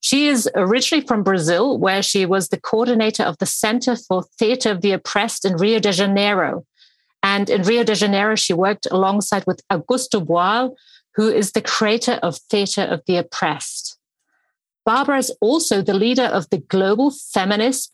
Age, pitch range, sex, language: 40-59, 195-245 Hz, female, English